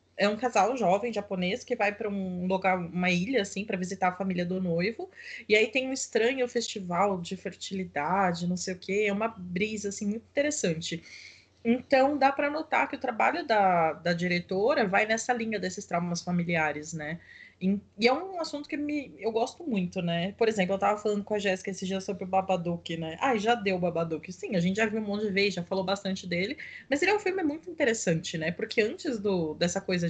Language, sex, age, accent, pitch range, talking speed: Portuguese, female, 20-39, Brazilian, 175-220 Hz, 210 wpm